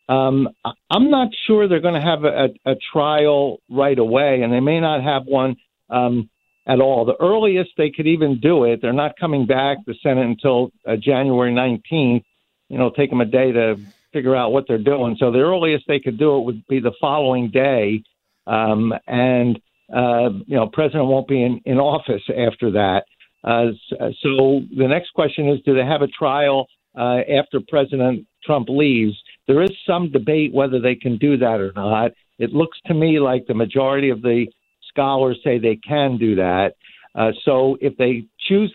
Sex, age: male, 60-79